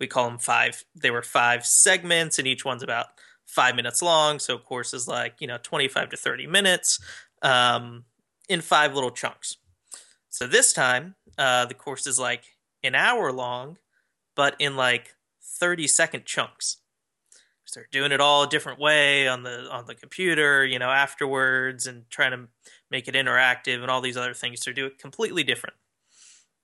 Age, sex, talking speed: 20-39, male, 180 wpm